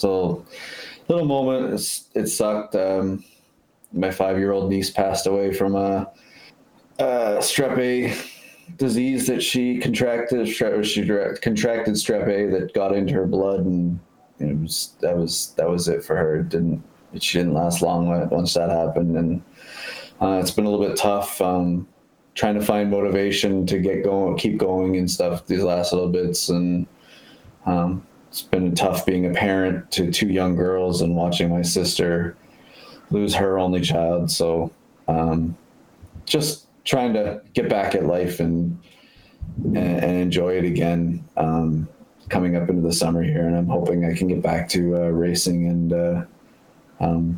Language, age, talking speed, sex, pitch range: English, 20-39, 160 wpm, male, 85-95 Hz